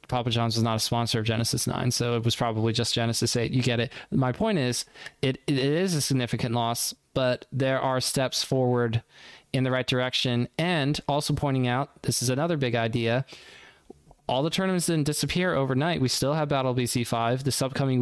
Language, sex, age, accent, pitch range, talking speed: English, male, 20-39, American, 120-140 Hz, 200 wpm